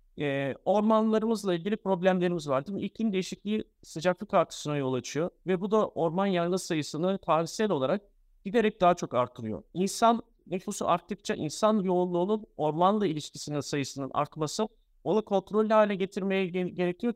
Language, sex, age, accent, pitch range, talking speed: Turkish, male, 50-69, native, 165-215 Hz, 130 wpm